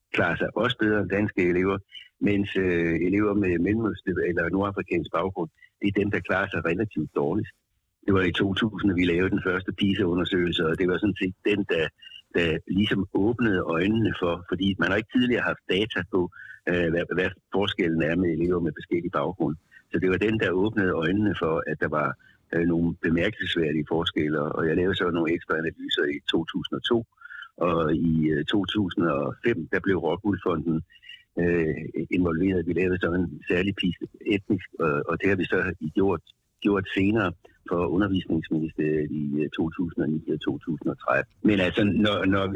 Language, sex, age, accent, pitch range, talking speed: Danish, male, 60-79, native, 85-105 Hz, 165 wpm